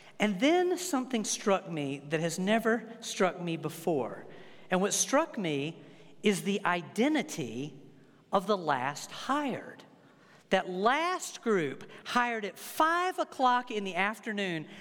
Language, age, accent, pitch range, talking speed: English, 50-69, American, 155-215 Hz, 130 wpm